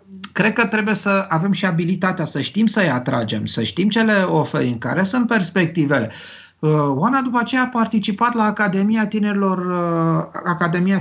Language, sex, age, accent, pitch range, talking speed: Romanian, male, 50-69, native, 140-195 Hz, 155 wpm